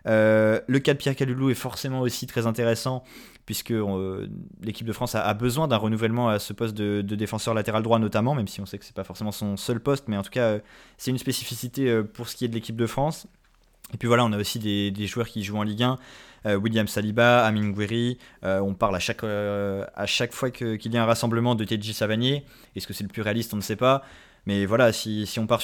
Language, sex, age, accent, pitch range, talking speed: French, male, 20-39, French, 105-125 Hz, 260 wpm